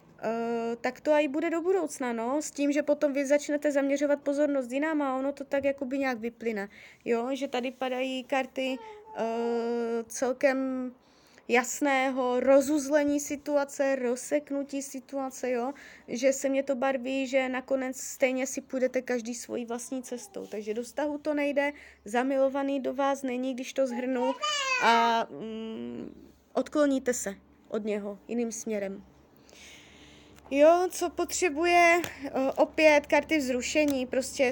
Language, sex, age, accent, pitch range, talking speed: Czech, female, 20-39, native, 250-295 Hz, 135 wpm